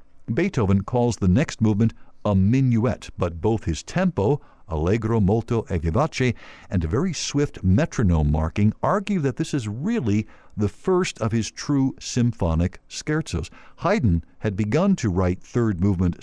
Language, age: English, 60-79